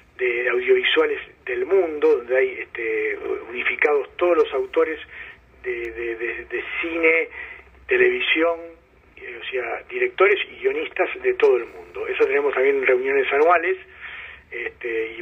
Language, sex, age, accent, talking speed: Spanish, male, 40-59, Argentinian, 120 wpm